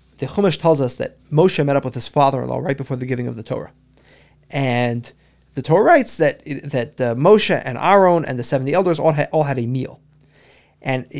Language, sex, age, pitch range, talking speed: English, male, 30-49, 135-160 Hz, 205 wpm